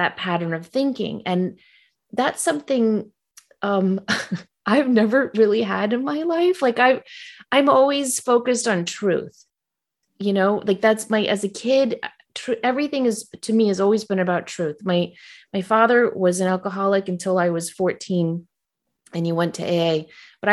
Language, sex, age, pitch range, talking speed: English, female, 30-49, 185-255 Hz, 165 wpm